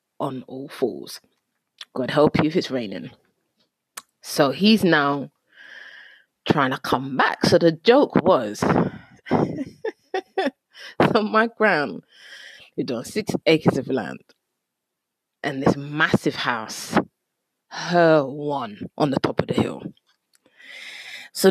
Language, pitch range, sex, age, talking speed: English, 140-230 Hz, female, 20-39, 120 wpm